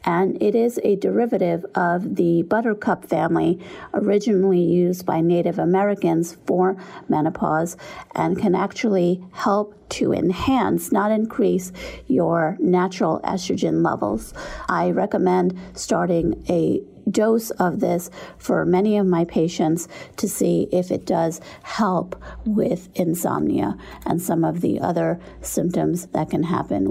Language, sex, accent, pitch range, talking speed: English, female, American, 170-205 Hz, 125 wpm